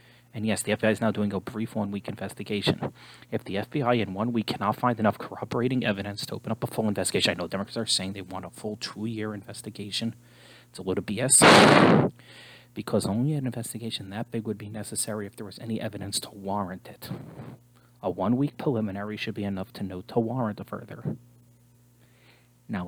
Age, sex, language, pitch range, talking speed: 30-49, male, English, 100-120 Hz, 200 wpm